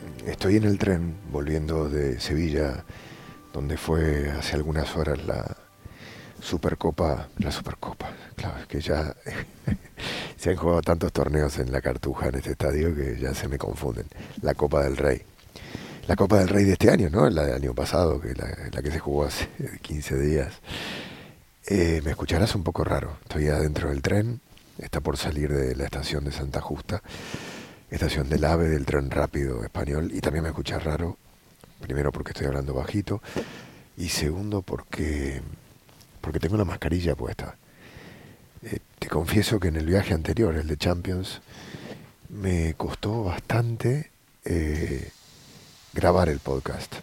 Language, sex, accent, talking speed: English, male, Argentinian, 155 wpm